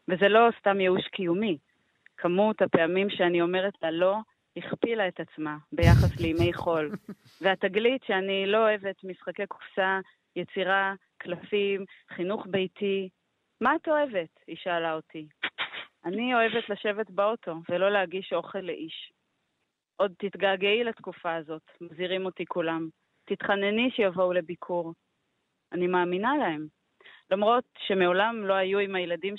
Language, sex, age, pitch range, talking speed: Hebrew, female, 30-49, 175-220 Hz, 125 wpm